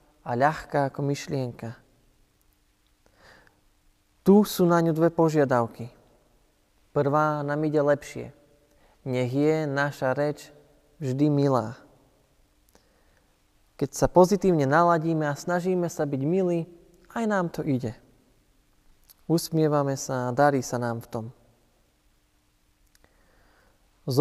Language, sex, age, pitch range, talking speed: Slovak, male, 20-39, 125-165 Hz, 105 wpm